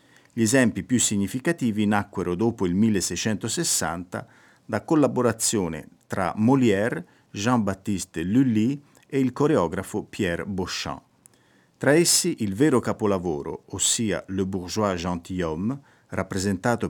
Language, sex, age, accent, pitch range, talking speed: Italian, male, 50-69, native, 95-130 Hz, 105 wpm